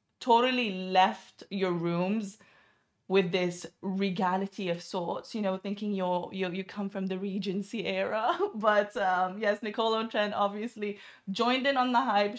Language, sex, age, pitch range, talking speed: Arabic, female, 20-39, 170-205 Hz, 150 wpm